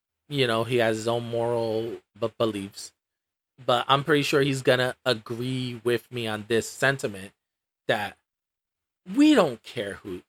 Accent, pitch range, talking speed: American, 115-150 Hz, 155 wpm